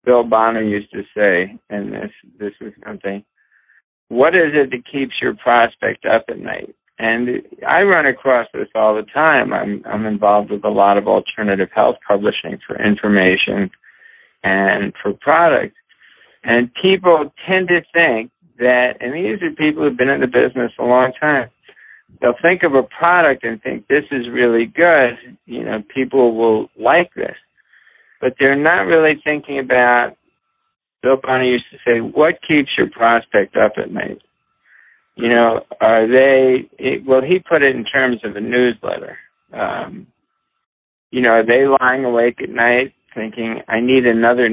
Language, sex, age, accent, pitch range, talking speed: English, male, 60-79, American, 115-135 Hz, 165 wpm